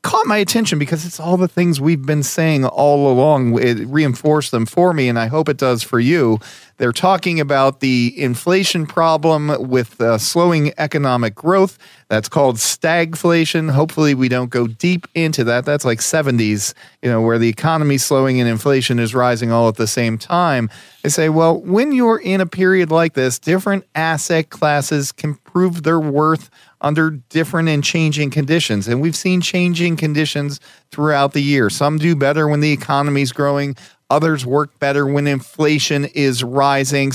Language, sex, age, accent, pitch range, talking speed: English, male, 40-59, American, 130-170 Hz, 175 wpm